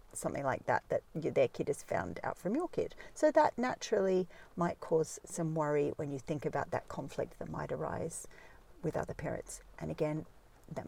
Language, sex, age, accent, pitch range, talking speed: English, female, 50-69, Australian, 155-185 Hz, 190 wpm